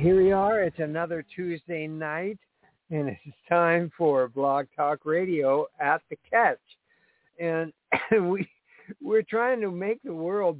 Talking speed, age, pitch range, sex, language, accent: 155 wpm, 60-79, 145-190 Hz, male, English, American